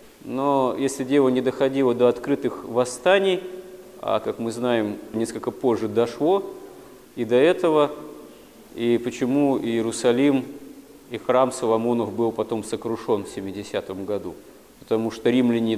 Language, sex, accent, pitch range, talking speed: Russian, male, native, 115-145 Hz, 125 wpm